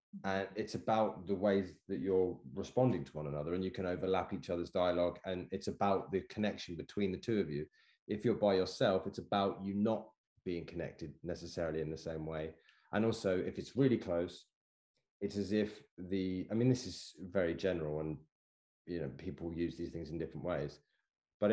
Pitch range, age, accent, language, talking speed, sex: 85-105 Hz, 30-49, British, English, 195 wpm, male